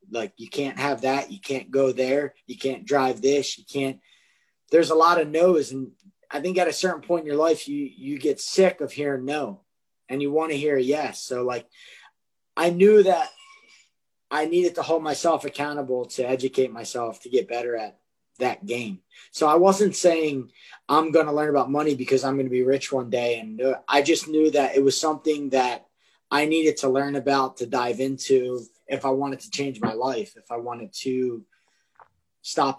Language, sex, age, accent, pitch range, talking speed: English, male, 20-39, American, 125-155 Hz, 200 wpm